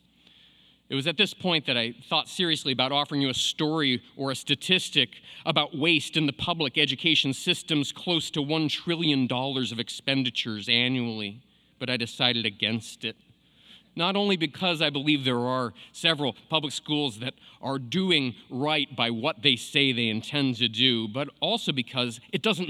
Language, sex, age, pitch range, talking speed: English, male, 30-49, 120-165 Hz, 170 wpm